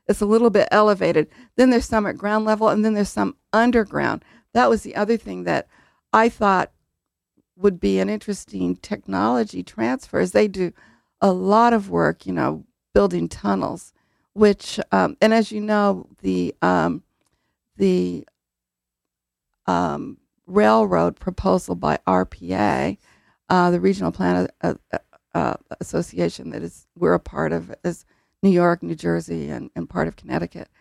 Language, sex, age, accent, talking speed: English, female, 50-69, American, 150 wpm